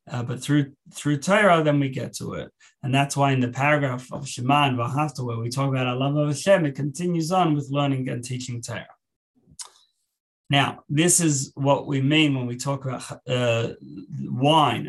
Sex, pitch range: male, 120-145 Hz